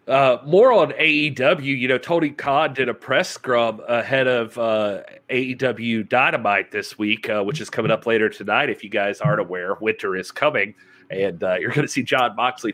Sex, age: male, 30-49